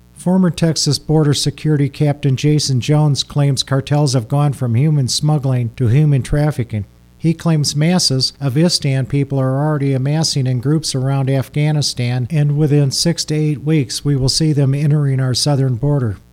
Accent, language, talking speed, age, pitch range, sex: American, English, 160 wpm, 50-69, 130-155 Hz, male